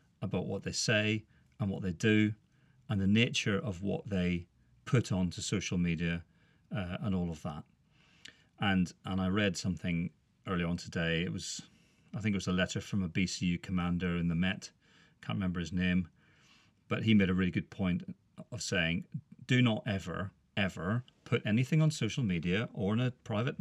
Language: English